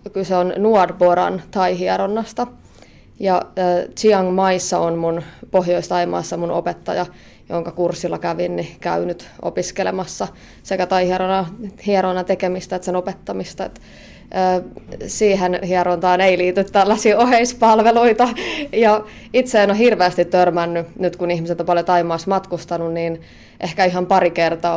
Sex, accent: female, native